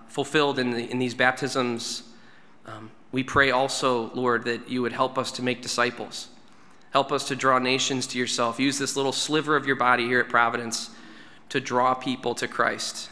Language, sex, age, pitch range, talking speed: English, male, 20-39, 125-140 Hz, 190 wpm